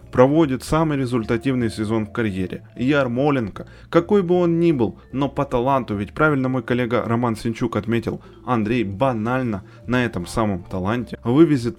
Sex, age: male, 20-39